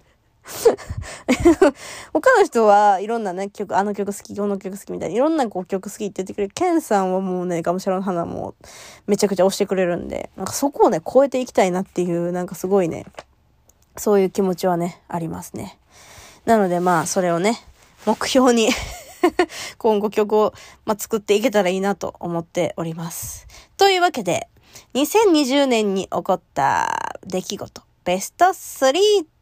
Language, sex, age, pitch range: Japanese, female, 20-39, 180-240 Hz